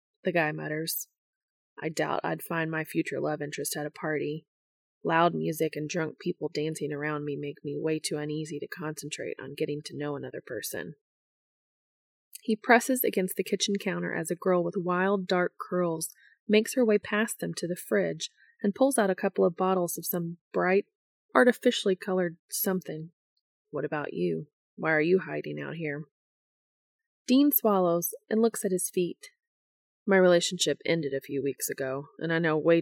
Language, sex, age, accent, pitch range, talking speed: English, female, 20-39, American, 155-205 Hz, 175 wpm